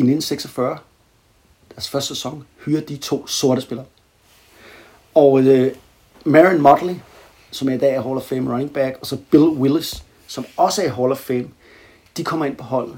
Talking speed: 185 wpm